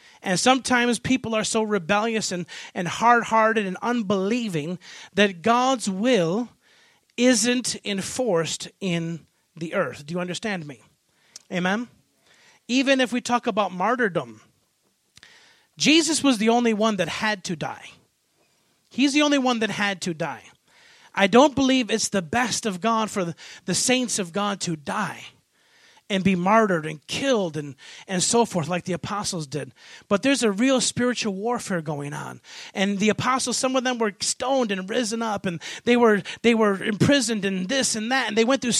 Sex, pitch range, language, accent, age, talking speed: male, 190-250 Hz, English, American, 30-49, 165 wpm